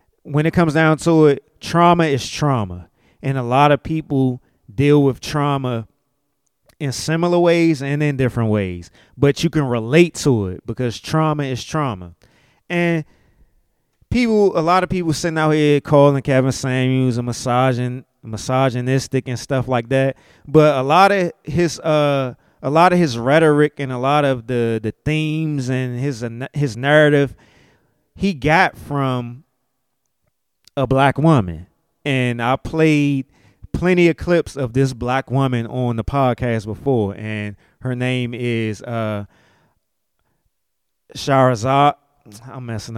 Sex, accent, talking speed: male, American, 145 wpm